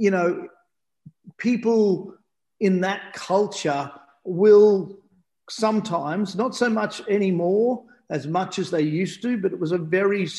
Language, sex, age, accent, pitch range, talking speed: English, male, 40-59, Australian, 170-200 Hz, 135 wpm